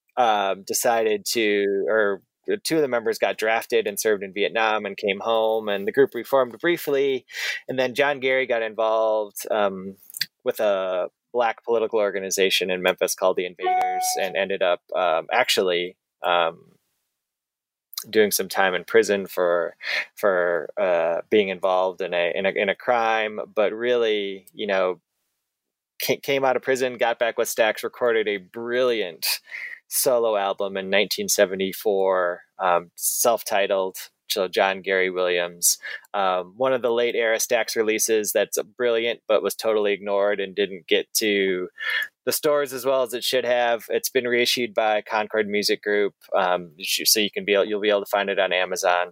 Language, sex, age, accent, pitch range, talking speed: English, male, 20-39, American, 95-125 Hz, 165 wpm